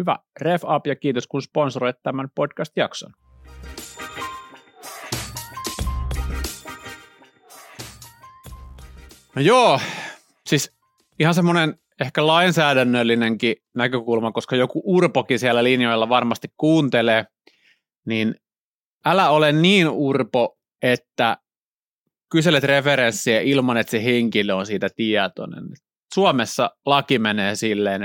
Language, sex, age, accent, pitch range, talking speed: Finnish, male, 30-49, native, 110-145 Hz, 90 wpm